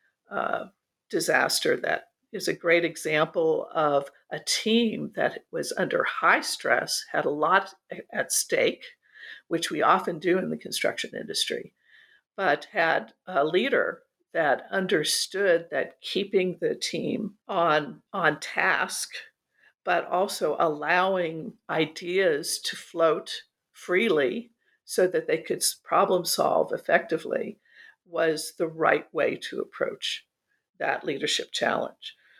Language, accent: English, American